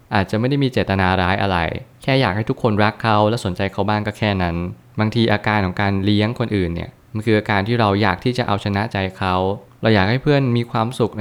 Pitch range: 100-120 Hz